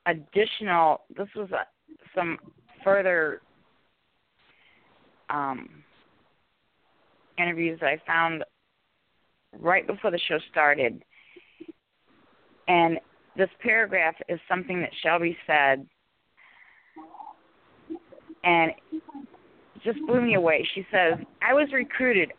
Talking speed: 95 wpm